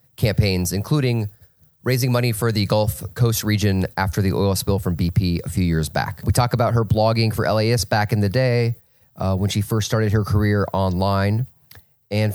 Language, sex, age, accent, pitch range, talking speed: English, male, 30-49, American, 105-130 Hz, 190 wpm